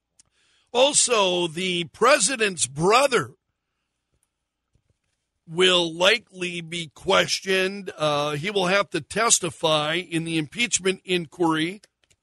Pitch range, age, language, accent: 145-185 Hz, 60-79, English, American